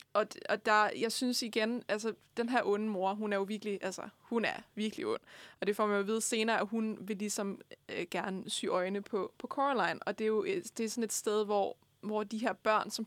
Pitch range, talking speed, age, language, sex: 200-225 Hz, 240 wpm, 20-39, Danish, female